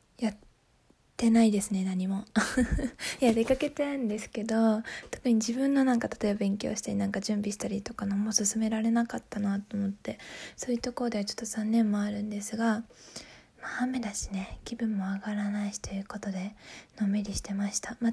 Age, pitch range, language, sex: 20-39, 215-250 Hz, Japanese, female